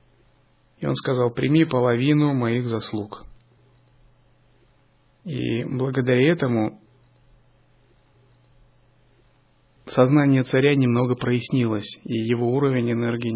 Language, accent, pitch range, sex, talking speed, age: Russian, native, 110-130 Hz, male, 80 wpm, 30-49